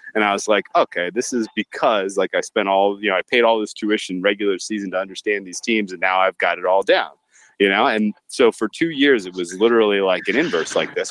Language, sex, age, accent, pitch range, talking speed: English, male, 20-39, American, 95-130 Hz, 255 wpm